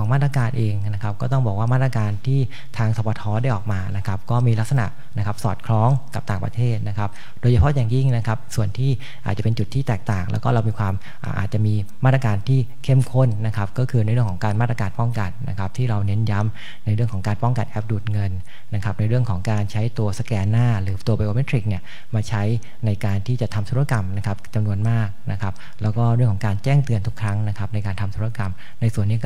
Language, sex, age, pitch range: English, male, 30-49, 105-125 Hz